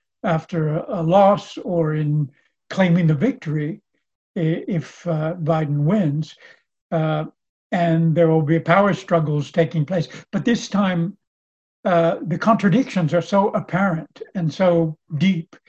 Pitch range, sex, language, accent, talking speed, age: 160-200 Hz, male, English, American, 125 wpm, 60-79